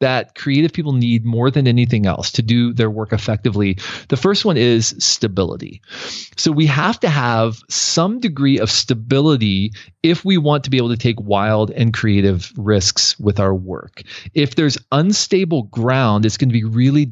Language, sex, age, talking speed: English, male, 40-59, 175 wpm